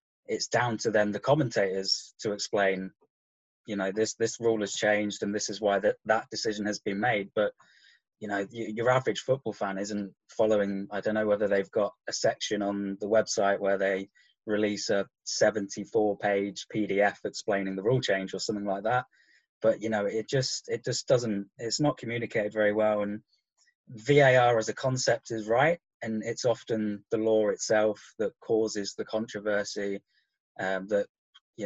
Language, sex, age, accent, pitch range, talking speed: English, male, 20-39, British, 100-110 Hz, 175 wpm